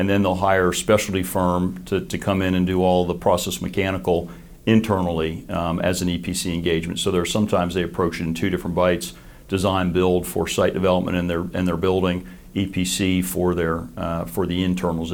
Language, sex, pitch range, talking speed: English, male, 85-90 Hz, 200 wpm